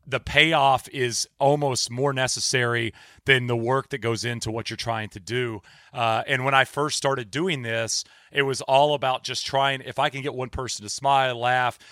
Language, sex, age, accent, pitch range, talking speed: English, male, 30-49, American, 120-145 Hz, 200 wpm